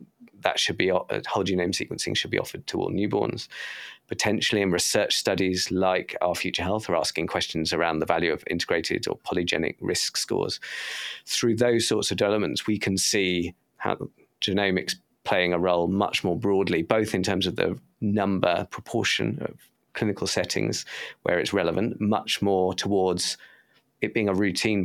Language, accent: English, British